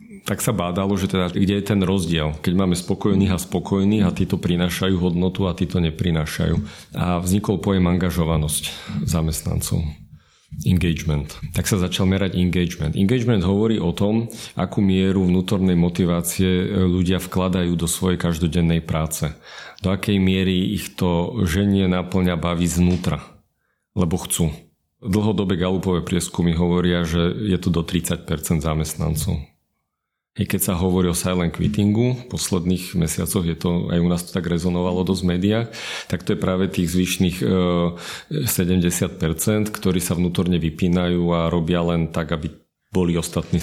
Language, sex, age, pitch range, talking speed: Slovak, male, 40-59, 85-95 Hz, 145 wpm